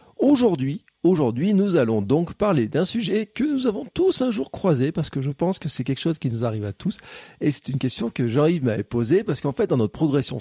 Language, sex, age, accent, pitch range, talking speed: French, male, 40-59, French, 125-185 Hz, 240 wpm